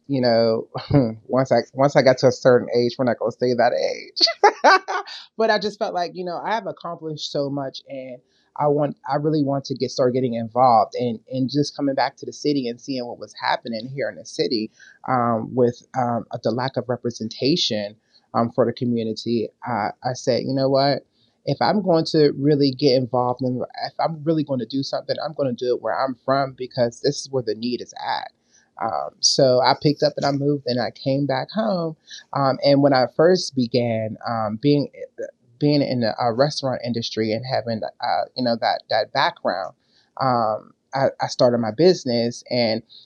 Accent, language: American, English